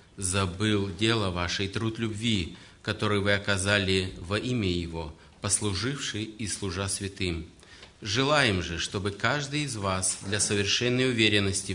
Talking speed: 125 wpm